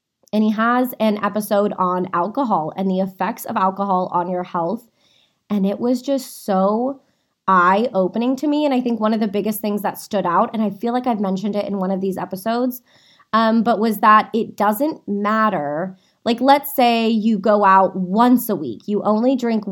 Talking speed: 200 wpm